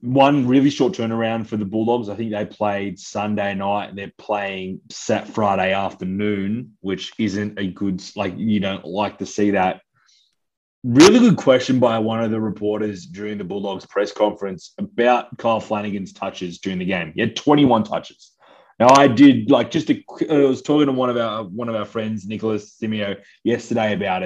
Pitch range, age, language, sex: 100-125 Hz, 20-39, English, male